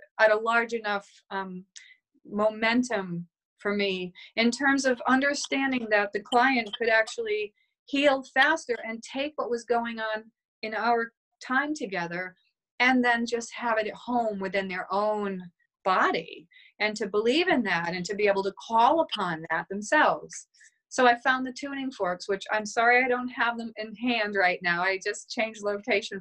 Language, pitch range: English, 195-255 Hz